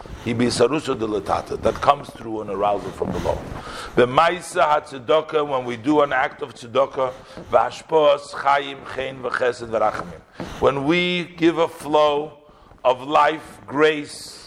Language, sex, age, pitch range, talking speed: English, male, 50-69, 145-195 Hz, 95 wpm